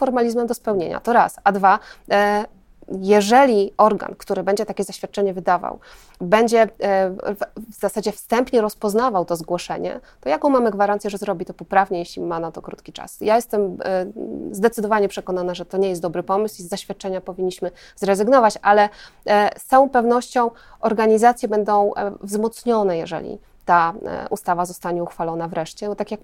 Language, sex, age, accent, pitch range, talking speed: Polish, female, 20-39, native, 185-220 Hz, 150 wpm